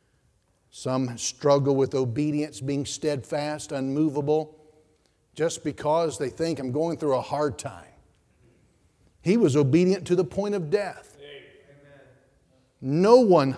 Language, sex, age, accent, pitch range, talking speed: English, male, 50-69, American, 155-215 Hz, 120 wpm